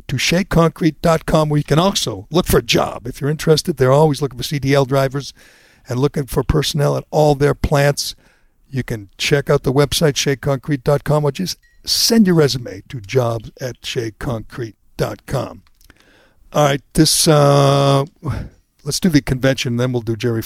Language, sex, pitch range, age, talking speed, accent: English, male, 125-160 Hz, 60-79, 160 wpm, American